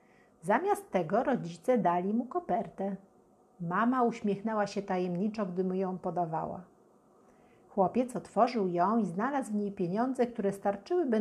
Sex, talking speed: female, 130 wpm